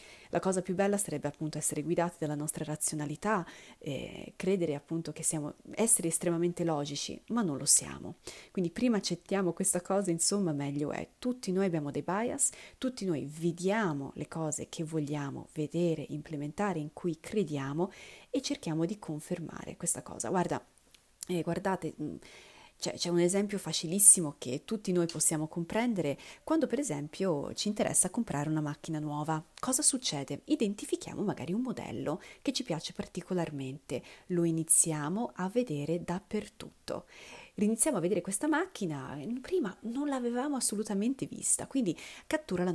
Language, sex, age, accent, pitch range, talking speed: Italian, female, 30-49, native, 155-215 Hz, 145 wpm